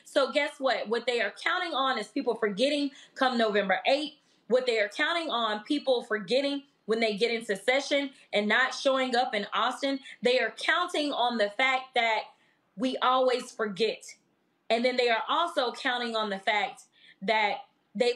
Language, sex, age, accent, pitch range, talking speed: English, female, 20-39, American, 220-285 Hz, 175 wpm